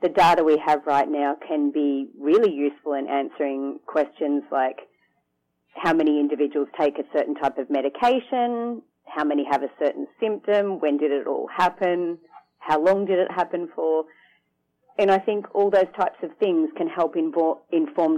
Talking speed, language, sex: 170 wpm, English, female